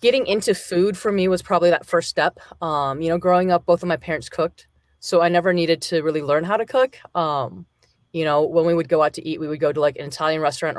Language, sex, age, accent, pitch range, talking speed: English, female, 30-49, American, 145-170 Hz, 265 wpm